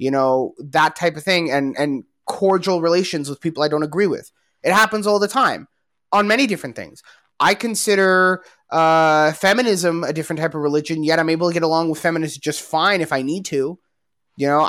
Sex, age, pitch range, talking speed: male, 20-39, 150-195 Hz, 205 wpm